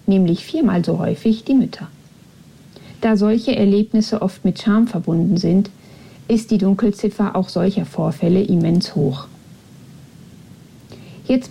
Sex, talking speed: female, 120 wpm